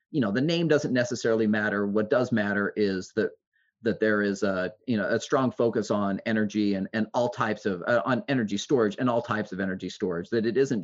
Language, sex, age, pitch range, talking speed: English, male, 30-49, 100-125 Hz, 225 wpm